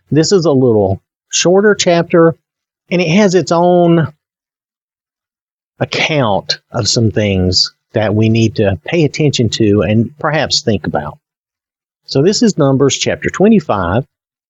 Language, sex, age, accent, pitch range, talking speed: English, male, 50-69, American, 115-170 Hz, 135 wpm